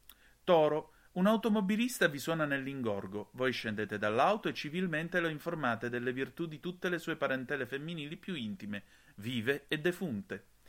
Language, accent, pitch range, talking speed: Italian, native, 110-170 Hz, 145 wpm